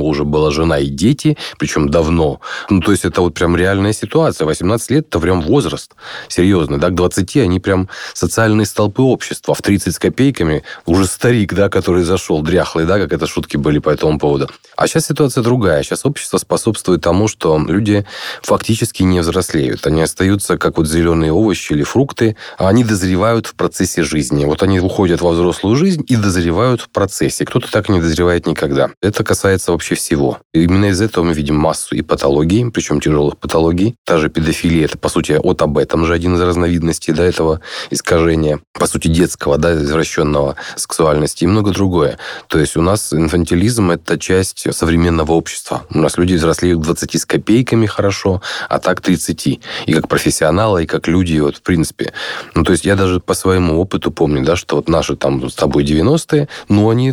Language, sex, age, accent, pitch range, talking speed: Russian, male, 30-49, native, 80-100 Hz, 190 wpm